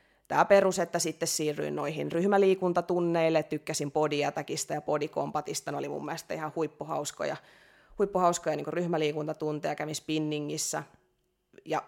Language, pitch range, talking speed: Finnish, 155-185 Hz, 125 wpm